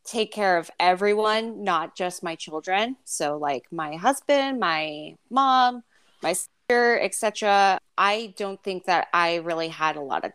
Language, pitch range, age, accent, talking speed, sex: English, 165-200 Hz, 20-39, American, 155 wpm, female